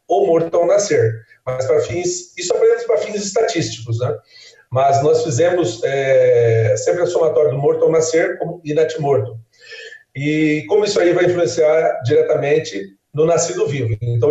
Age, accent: 40-59, Brazilian